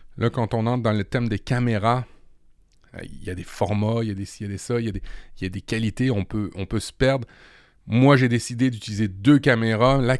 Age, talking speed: 30-49, 270 wpm